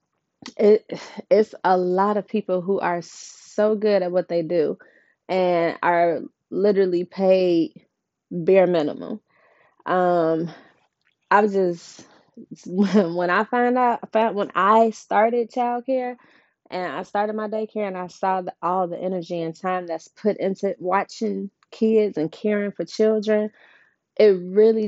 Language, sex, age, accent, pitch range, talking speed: English, female, 20-39, American, 170-205 Hz, 135 wpm